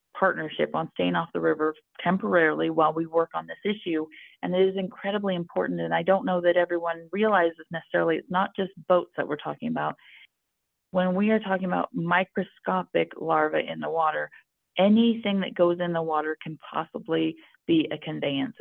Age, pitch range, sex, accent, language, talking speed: 40-59, 150-185 Hz, female, American, English, 175 wpm